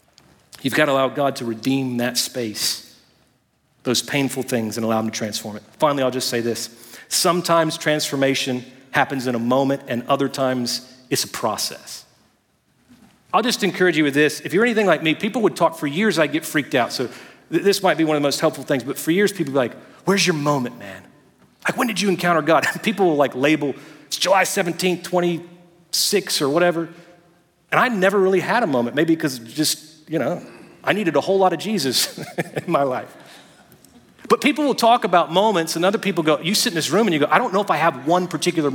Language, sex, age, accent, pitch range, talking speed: English, male, 40-59, American, 140-190 Hz, 220 wpm